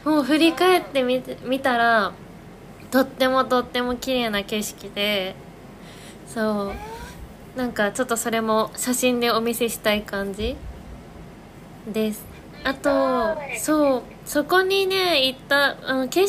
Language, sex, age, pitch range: Japanese, female, 20-39, 215-270 Hz